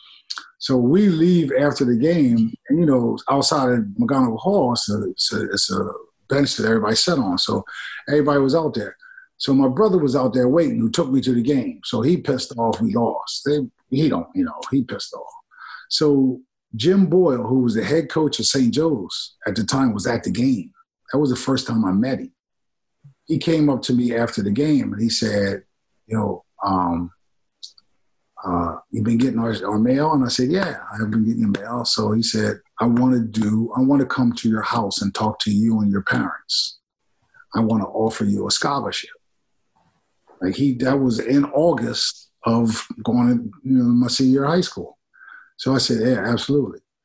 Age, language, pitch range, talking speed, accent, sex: 50-69, English, 115-180 Hz, 195 wpm, American, male